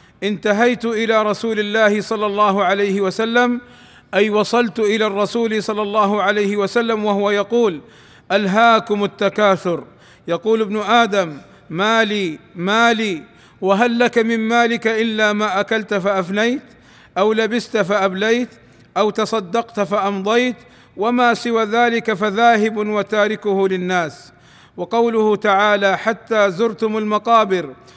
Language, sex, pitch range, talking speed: Arabic, male, 200-225 Hz, 105 wpm